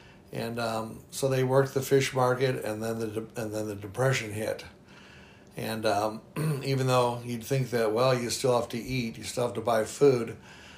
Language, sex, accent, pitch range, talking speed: English, male, American, 115-130 Hz, 200 wpm